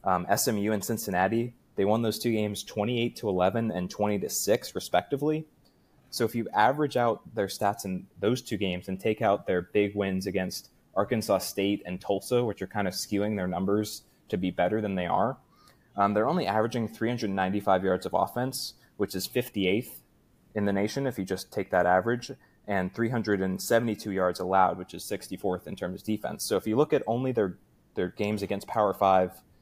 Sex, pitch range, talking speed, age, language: male, 95-115 Hz, 195 wpm, 20-39, English